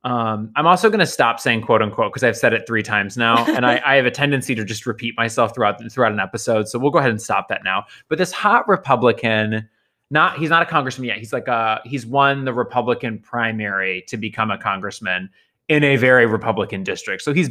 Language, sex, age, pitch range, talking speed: English, male, 20-39, 110-130 Hz, 230 wpm